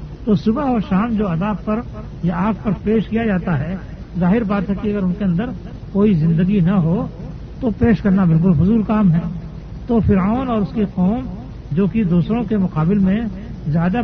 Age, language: 60-79, Urdu